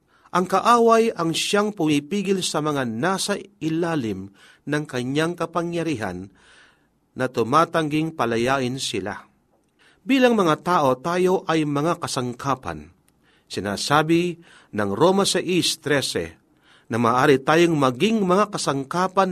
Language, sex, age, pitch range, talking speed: Filipino, male, 40-59, 125-170 Hz, 105 wpm